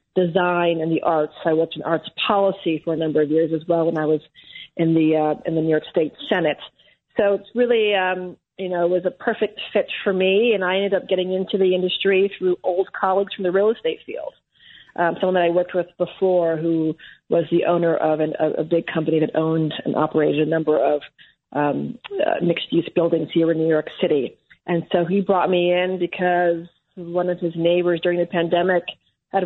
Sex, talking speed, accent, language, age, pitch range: female, 215 wpm, American, English, 40-59, 165-180 Hz